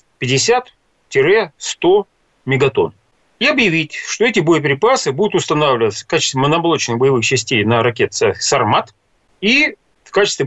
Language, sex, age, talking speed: Russian, male, 40-59, 115 wpm